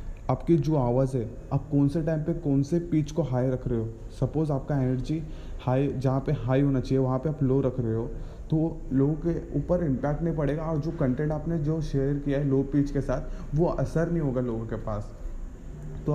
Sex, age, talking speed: male, 20-39, 225 wpm